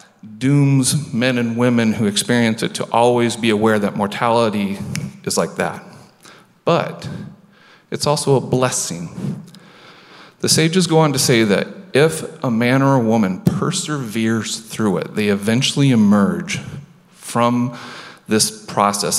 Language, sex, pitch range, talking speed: English, male, 110-145 Hz, 135 wpm